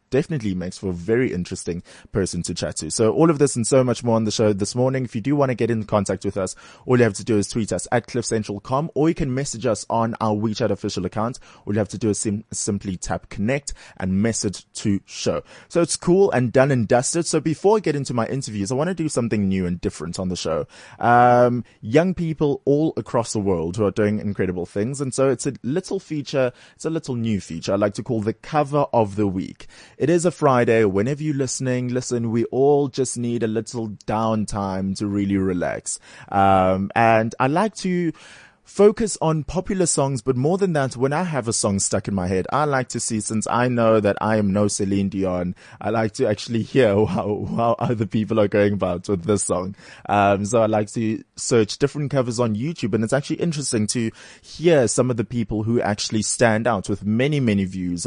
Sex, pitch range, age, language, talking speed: male, 100-130 Hz, 20-39, English, 225 wpm